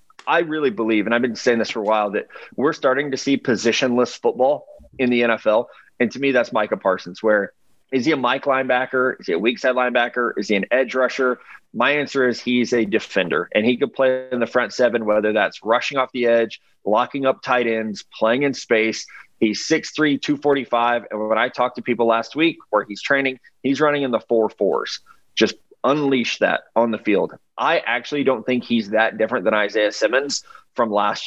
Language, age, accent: English, 30-49, American